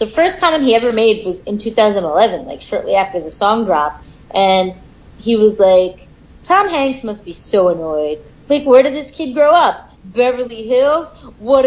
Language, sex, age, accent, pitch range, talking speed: English, female, 30-49, American, 210-310 Hz, 180 wpm